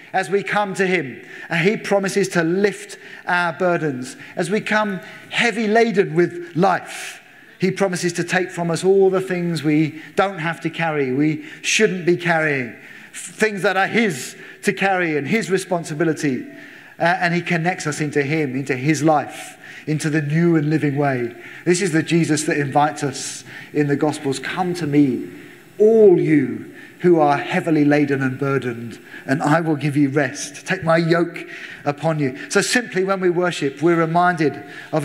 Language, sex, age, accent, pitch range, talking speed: English, male, 40-59, British, 150-185 Hz, 175 wpm